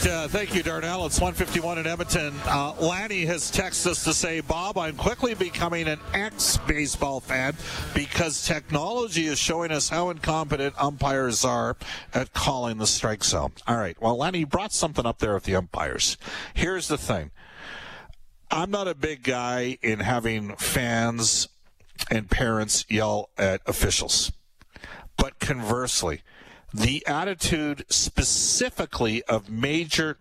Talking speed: 140 wpm